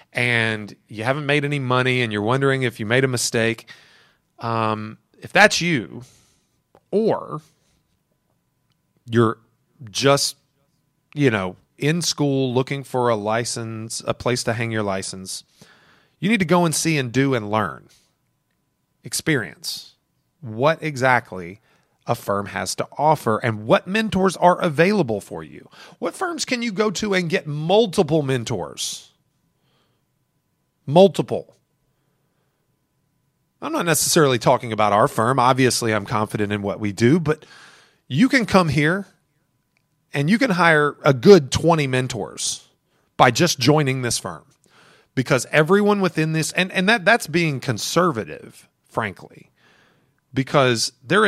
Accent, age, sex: American, 30-49, male